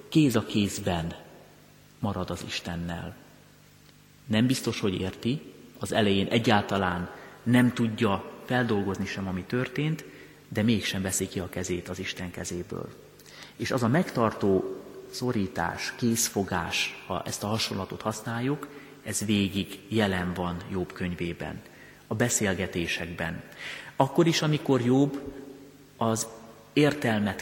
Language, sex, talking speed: Hungarian, male, 115 wpm